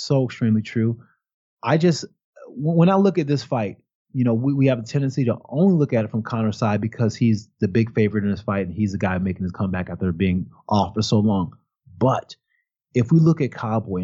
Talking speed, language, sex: 225 wpm, English, male